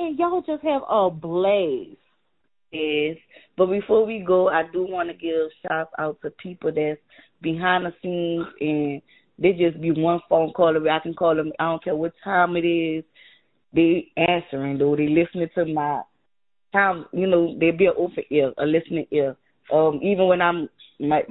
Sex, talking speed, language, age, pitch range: female, 180 wpm, English, 20-39, 155-175 Hz